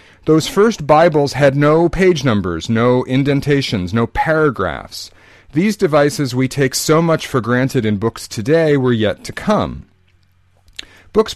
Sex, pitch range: male, 105-145 Hz